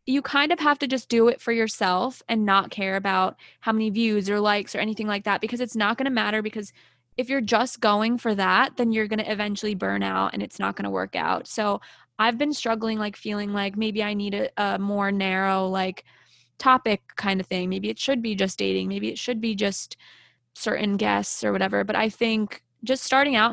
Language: English